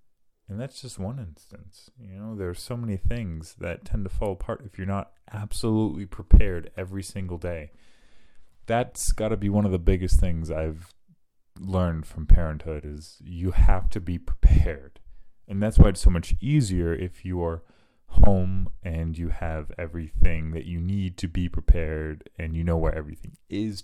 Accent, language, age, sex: American, English, 30-49, male